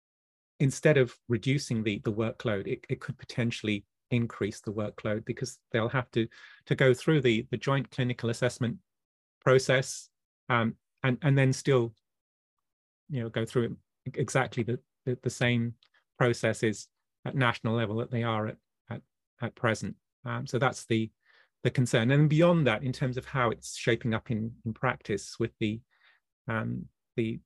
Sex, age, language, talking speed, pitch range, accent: male, 30-49, English, 160 wpm, 110-125 Hz, British